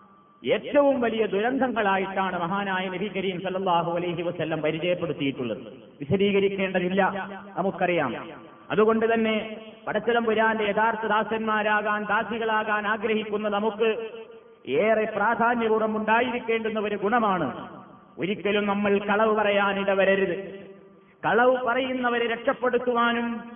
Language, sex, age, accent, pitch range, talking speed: Malayalam, male, 30-49, native, 195-235 Hz, 85 wpm